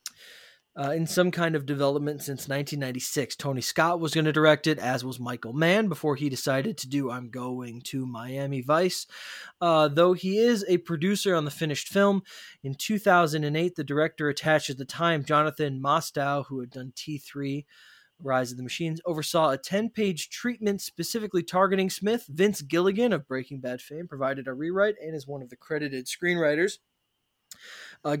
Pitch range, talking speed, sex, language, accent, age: 140-185 Hz, 170 wpm, male, English, American, 20-39